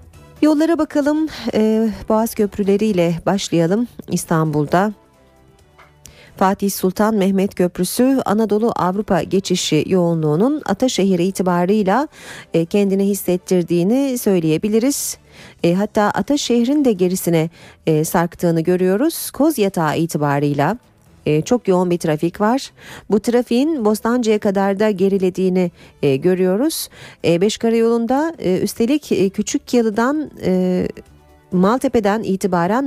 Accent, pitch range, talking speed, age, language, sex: native, 175-235 Hz, 100 wpm, 40-59, Turkish, female